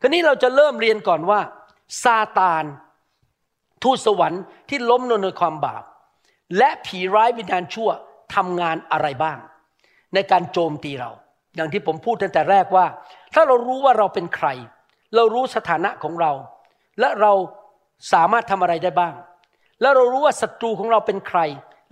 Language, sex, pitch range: Thai, male, 185-250 Hz